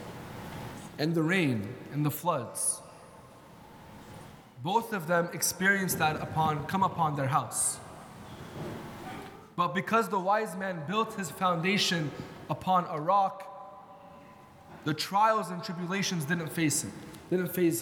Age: 20-39